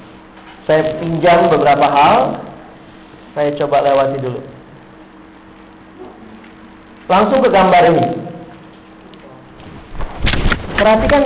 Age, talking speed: 40-59, 70 wpm